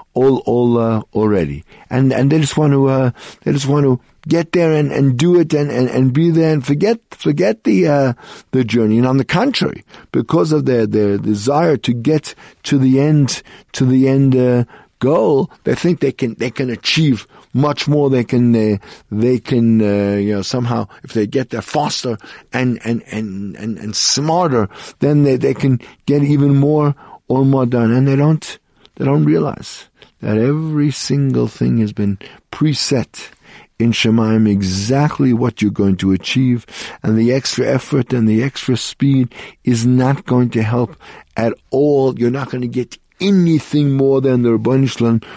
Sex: male